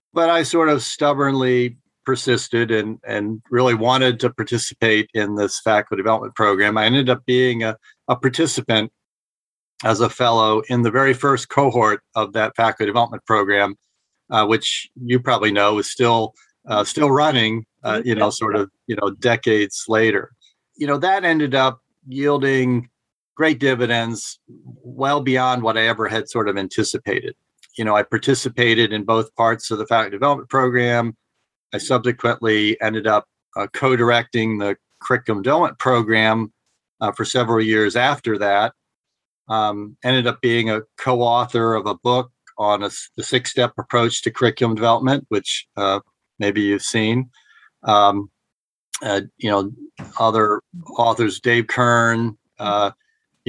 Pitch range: 110-125 Hz